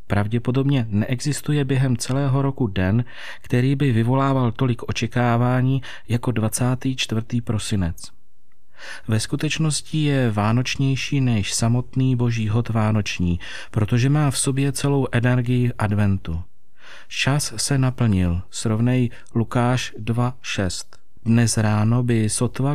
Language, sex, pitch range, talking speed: Czech, male, 110-135 Hz, 105 wpm